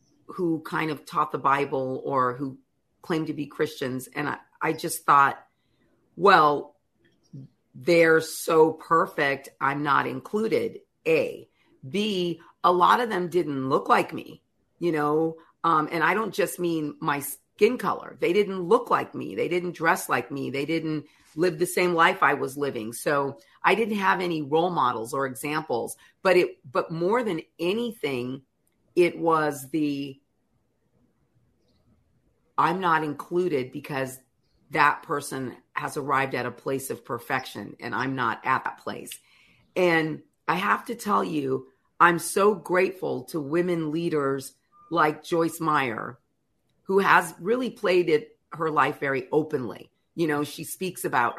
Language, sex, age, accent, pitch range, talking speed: English, female, 40-59, American, 140-175 Hz, 150 wpm